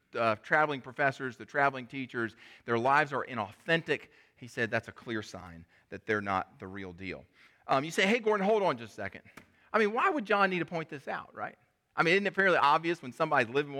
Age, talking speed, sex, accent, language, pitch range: 40-59, 225 wpm, male, American, English, 130-185 Hz